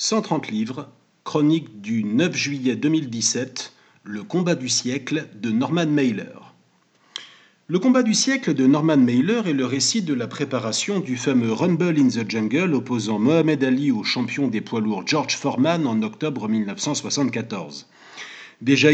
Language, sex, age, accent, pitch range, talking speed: French, male, 50-69, French, 120-180 Hz, 150 wpm